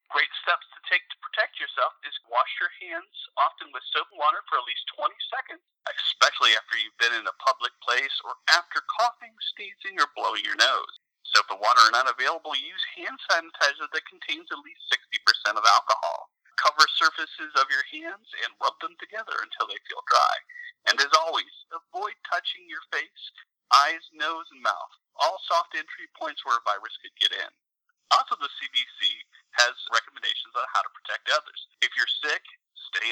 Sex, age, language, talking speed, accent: male, 40-59, English, 185 wpm, American